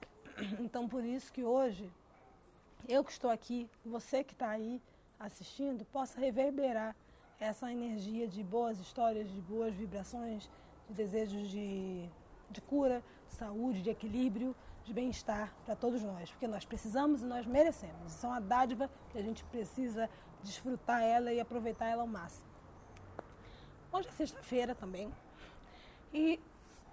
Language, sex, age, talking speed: Portuguese, female, 20-39, 145 wpm